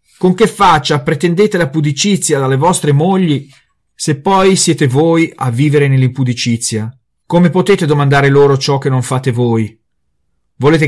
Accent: native